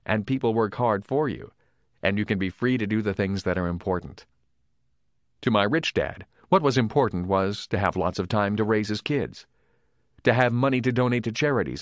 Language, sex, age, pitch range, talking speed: English, male, 40-59, 100-125 Hz, 215 wpm